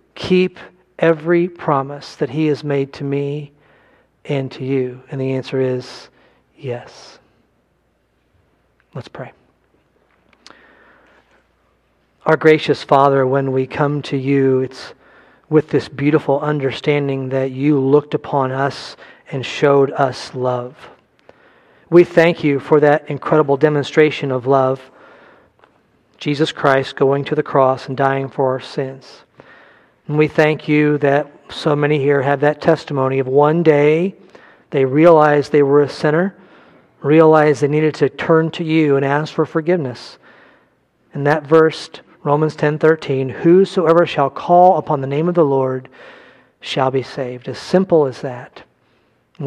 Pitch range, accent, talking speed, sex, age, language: 135-155 Hz, American, 140 wpm, male, 40-59, English